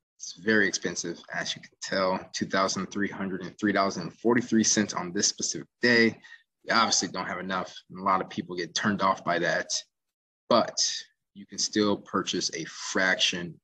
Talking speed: 150 wpm